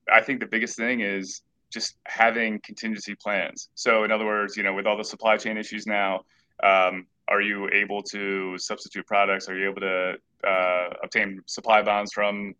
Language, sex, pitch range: English, male, 95-105 Hz